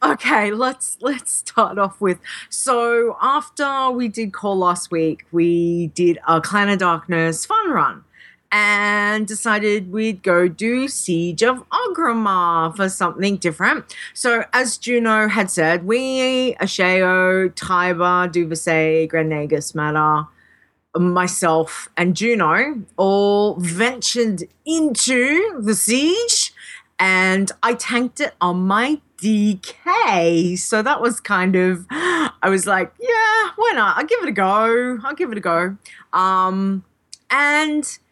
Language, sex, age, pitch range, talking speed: English, female, 30-49, 180-250 Hz, 130 wpm